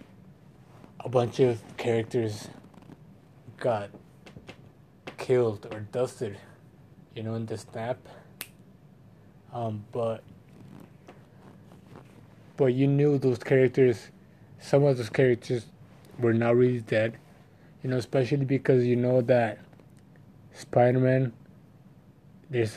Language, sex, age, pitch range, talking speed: English, male, 20-39, 115-130 Hz, 95 wpm